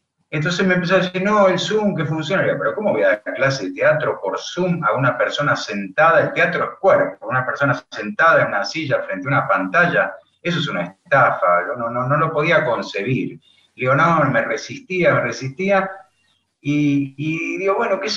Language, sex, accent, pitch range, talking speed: Spanish, male, Argentinian, 125-180 Hz, 190 wpm